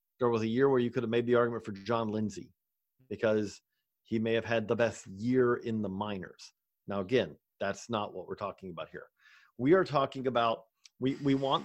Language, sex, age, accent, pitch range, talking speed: English, male, 40-59, American, 110-135 Hz, 210 wpm